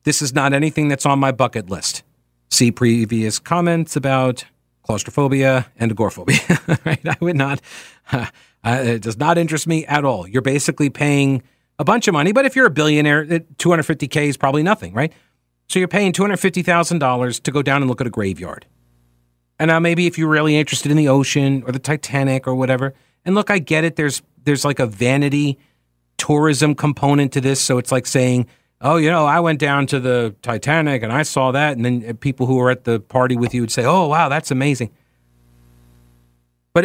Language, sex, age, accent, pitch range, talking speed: English, male, 40-59, American, 115-150 Hz, 195 wpm